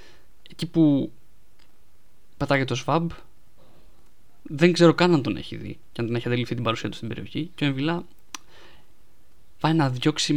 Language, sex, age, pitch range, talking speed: Greek, male, 20-39, 115-155 Hz, 160 wpm